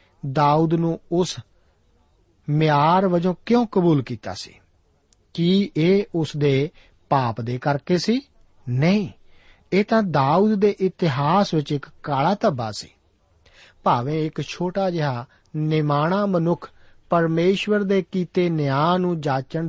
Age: 50-69